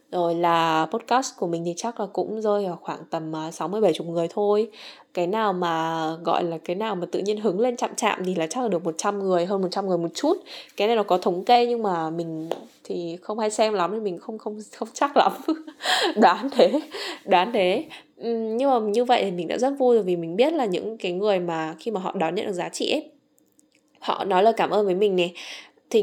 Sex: female